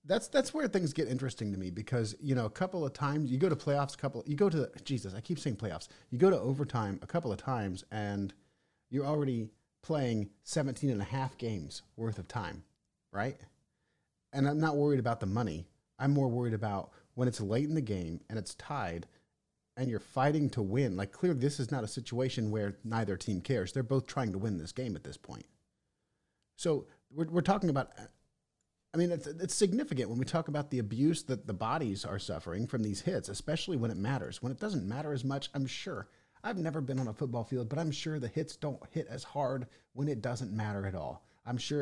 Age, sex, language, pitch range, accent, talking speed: 40-59, male, English, 105-145 Hz, American, 225 wpm